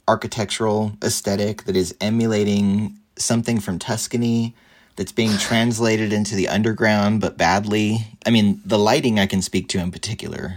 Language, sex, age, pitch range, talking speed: English, male, 30-49, 90-110 Hz, 150 wpm